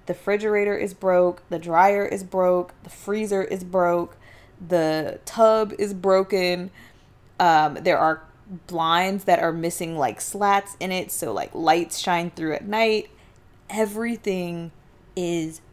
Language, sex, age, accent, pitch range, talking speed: English, female, 20-39, American, 155-190 Hz, 135 wpm